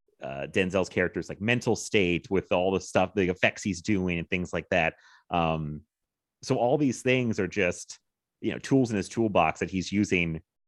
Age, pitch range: 30-49, 90-115 Hz